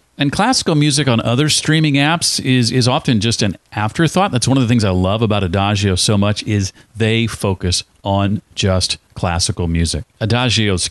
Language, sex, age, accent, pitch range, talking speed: English, male, 40-59, American, 95-130 Hz, 175 wpm